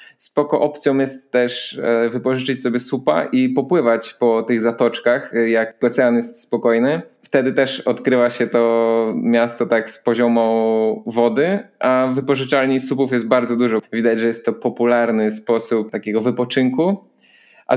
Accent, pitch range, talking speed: native, 115-130 Hz, 140 wpm